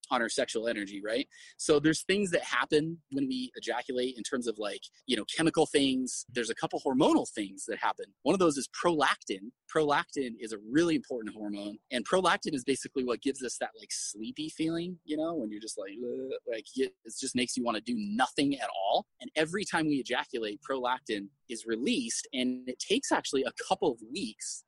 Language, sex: English, male